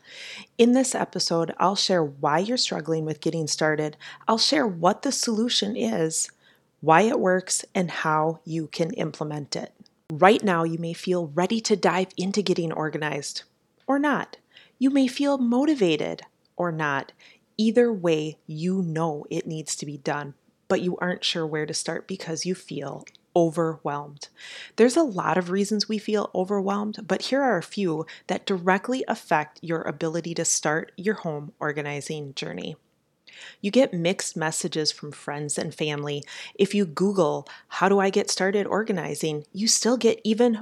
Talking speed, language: 160 wpm, English